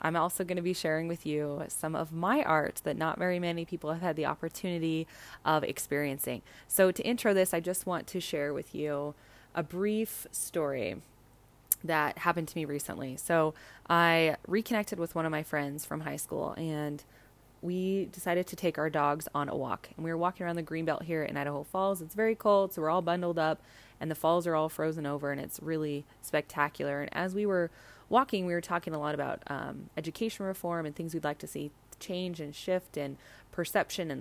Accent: American